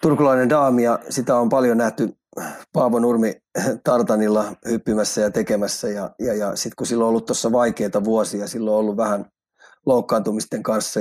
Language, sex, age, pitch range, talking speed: Finnish, male, 30-49, 110-125 Hz, 165 wpm